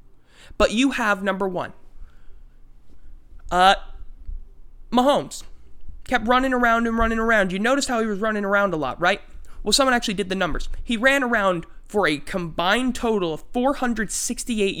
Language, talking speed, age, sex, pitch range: English, 155 wpm, 20-39, male, 175-240 Hz